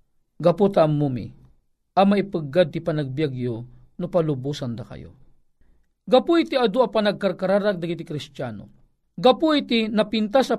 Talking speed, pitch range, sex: 115 wpm, 150-205 Hz, male